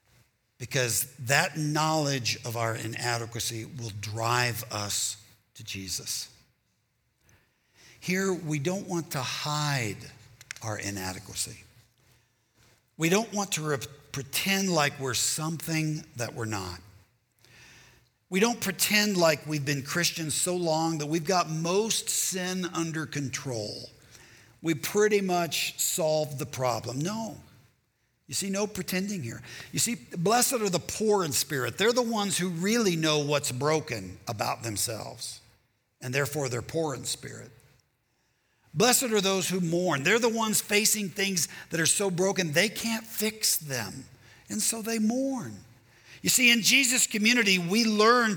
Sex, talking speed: male, 140 wpm